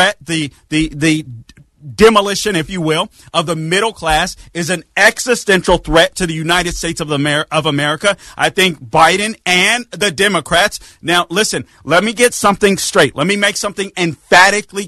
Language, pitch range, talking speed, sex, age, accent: English, 165-205 Hz, 170 wpm, male, 40-59, American